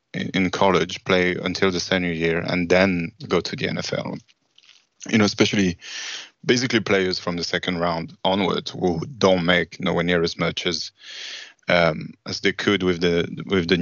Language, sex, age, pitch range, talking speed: English, male, 20-39, 85-95 Hz, 160 wpm